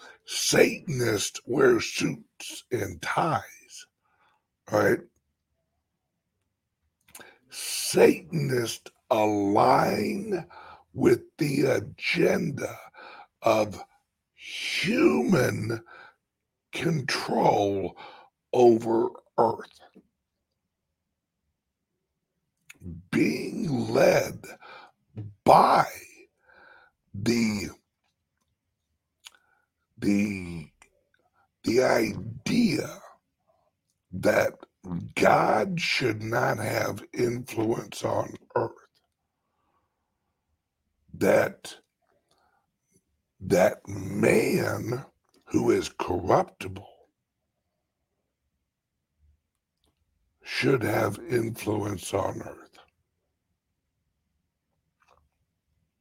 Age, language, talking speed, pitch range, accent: 60-79, English, 45 wpm, 85-115 Hz, American